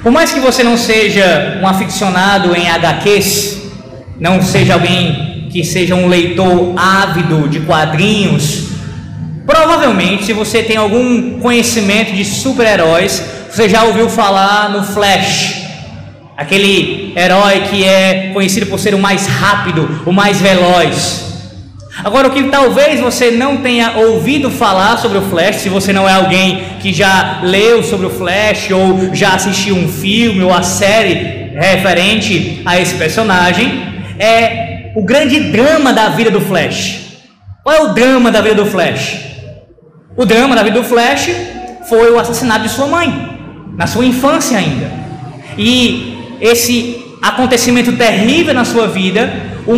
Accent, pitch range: Brazilian, 185-245 Hz